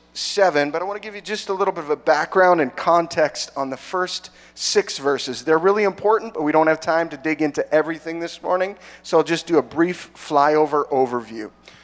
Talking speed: 220 wpm